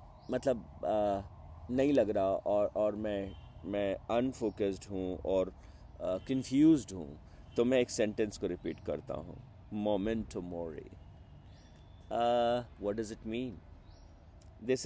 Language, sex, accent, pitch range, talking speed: Hindi, male, native, 95-125 Hz, 120 wpm